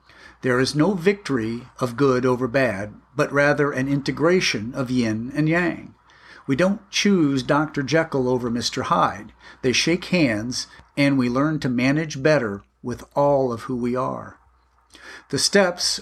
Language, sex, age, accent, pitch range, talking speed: English, male, 50-69, American, 125-155 Hz, 155 wpm